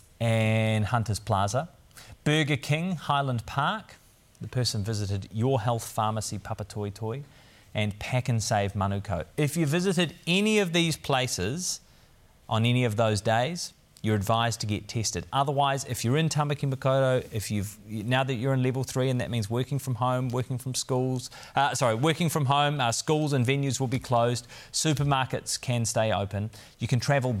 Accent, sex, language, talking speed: Australian, male, English, 170 wpm